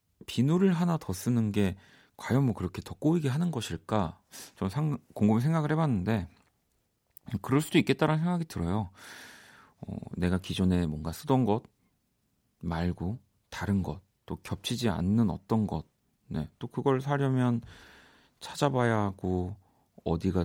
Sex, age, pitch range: male, 40-59, 90-130 Hz